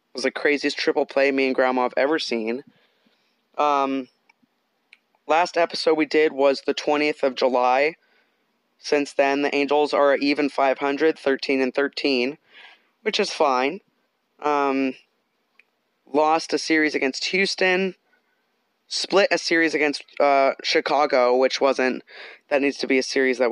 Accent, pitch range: American, 130-160 Hz